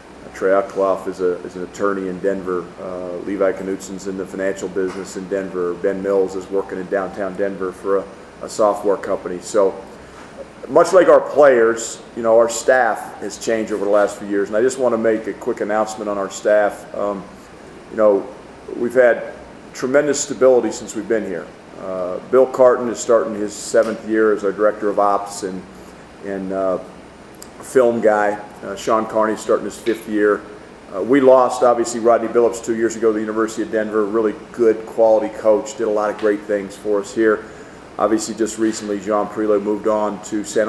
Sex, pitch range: male, 100-110 Hz